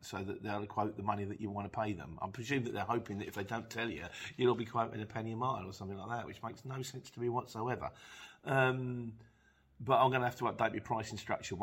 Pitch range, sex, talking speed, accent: 105-125 Hz, male, 270 wpm, British